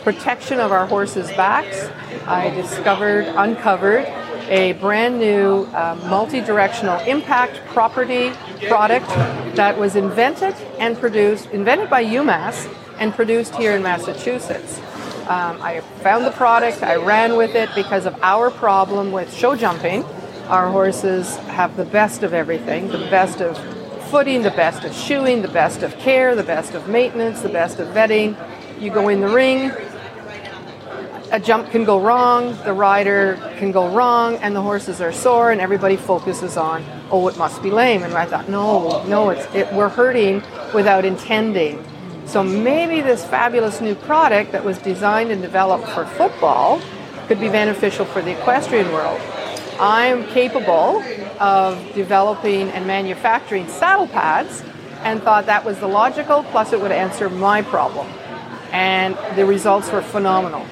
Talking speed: 155 wpm